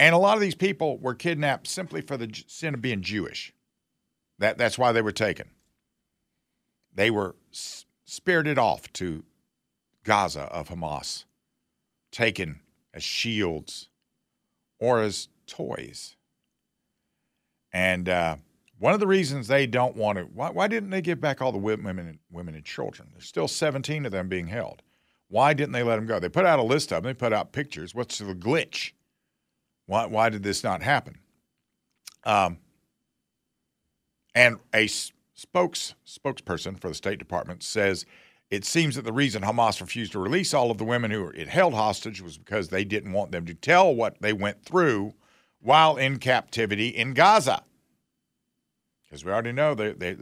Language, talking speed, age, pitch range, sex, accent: English, 170 wpm, 50-69, 90-130 Hz, male, American